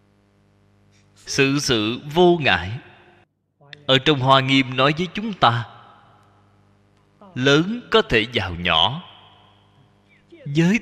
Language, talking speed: Vietnamese, 100 wpm